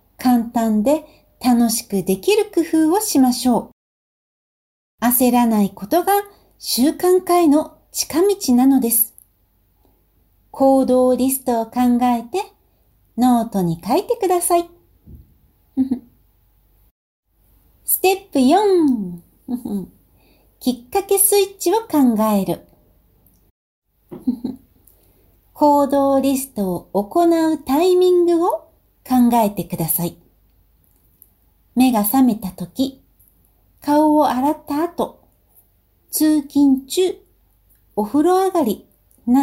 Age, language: 60-79, Japanese